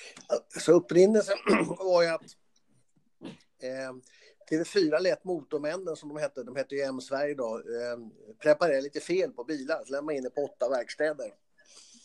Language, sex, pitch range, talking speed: Swedish, male, 135-175 Hz, 150 wpm